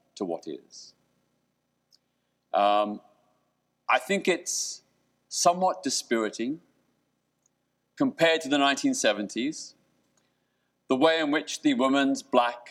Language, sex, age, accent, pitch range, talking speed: English, male, 40-59, British, 105-175 Hz, 95 wpm